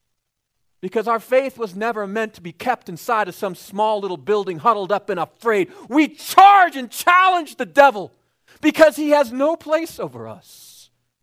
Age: 40-59